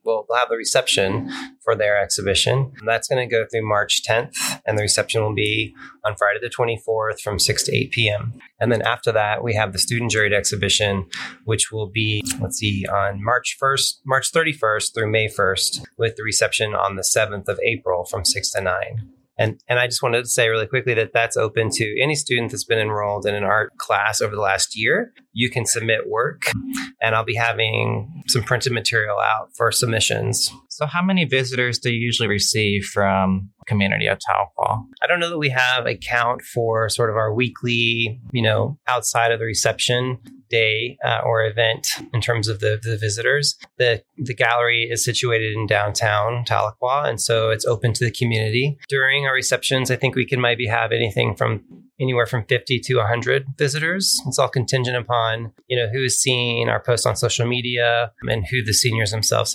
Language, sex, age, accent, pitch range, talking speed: English, male, 30-49, American, 110-125 Hz, 195 wpm